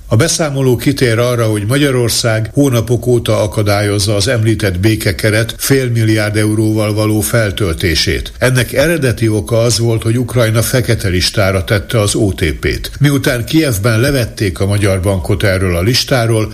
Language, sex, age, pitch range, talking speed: Hungarian, male, 60-79, 105-125 Hz, 135 wpm